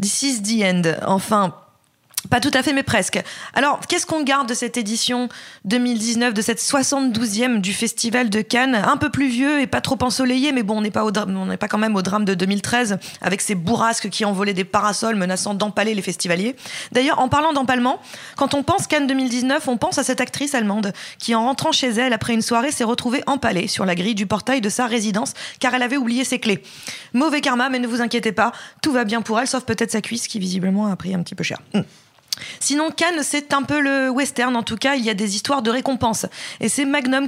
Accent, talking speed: French, 230 wpm